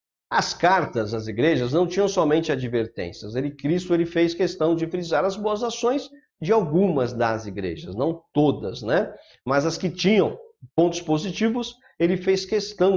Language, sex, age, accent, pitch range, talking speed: Portuguese, male, 50-69, Brazilian, 130-190 Hz, 155 wpm